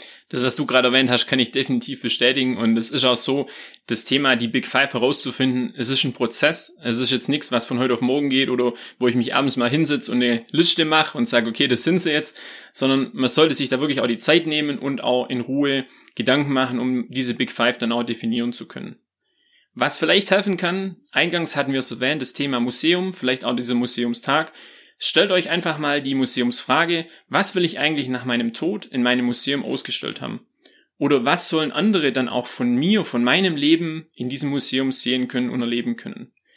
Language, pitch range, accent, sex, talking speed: German, 125-160 Hz, German, male, 215 wpm